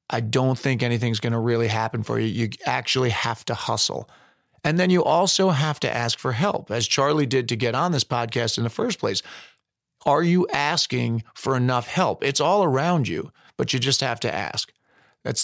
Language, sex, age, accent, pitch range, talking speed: English, male, 40-59, American, 115-145 Hz, 205 wpm